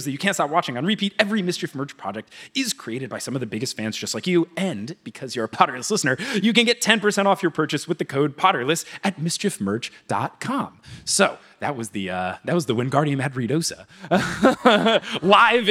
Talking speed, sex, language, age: 205 wpm, male, English, 30-49